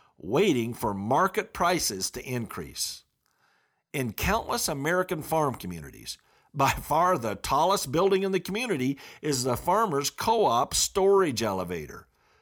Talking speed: 120 wpm